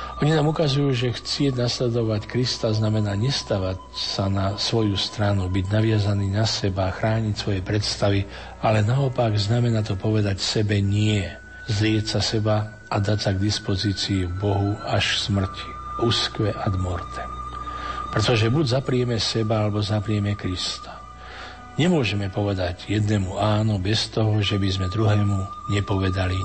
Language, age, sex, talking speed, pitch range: Slovak, 50-69, male, 135 wpm, 100-110 Hz